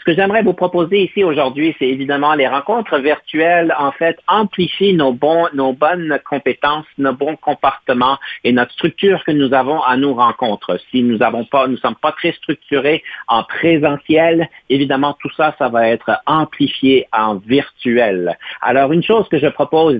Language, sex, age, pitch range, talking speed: French, male, 50-69, 130-160 Hz, 175 wpm